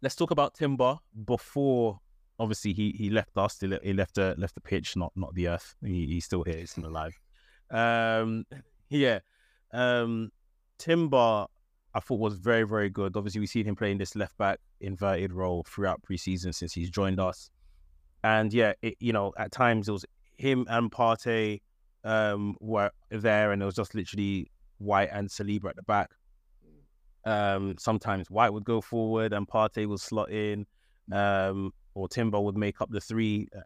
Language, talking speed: English, 180 wpm